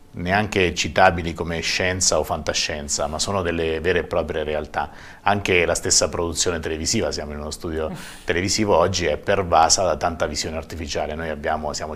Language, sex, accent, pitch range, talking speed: Italian, male, native, 80-100 Hz, 165 wpm